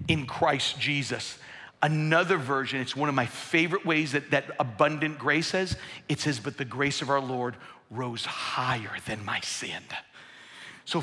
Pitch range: 145-175 Hz